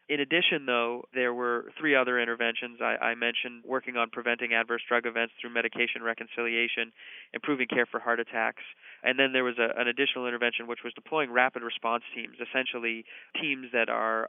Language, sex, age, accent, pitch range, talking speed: English, male, 20-39, American, 115-125 Hz, 175 wpm